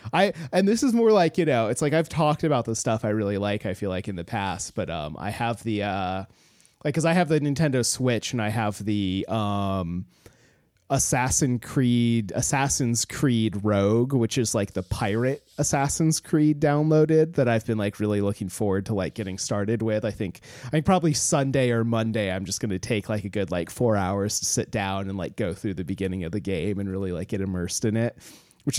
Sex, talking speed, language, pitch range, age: male, 220 wpm, English, 105-135 Hz, 30-49